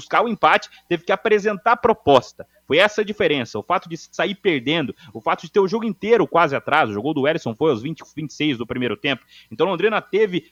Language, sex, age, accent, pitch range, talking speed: Portuguese, male, 30-49, Brazilian, 140-170 Hz, 230 wpm